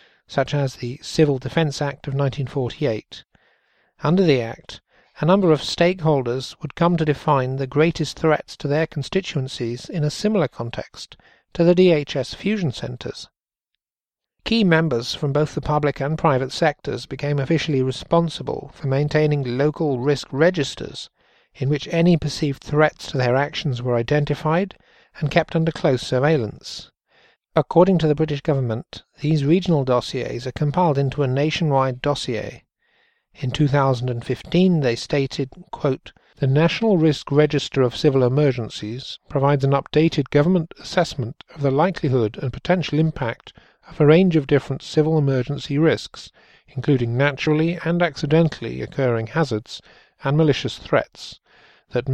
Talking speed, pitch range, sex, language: 140 wpm, 135-160 Hz, male, English